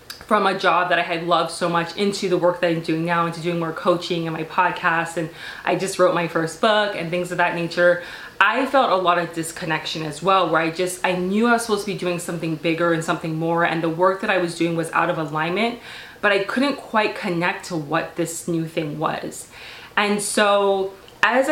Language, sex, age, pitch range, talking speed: English, female, 20-39, 170-205 Hz, 235 wpm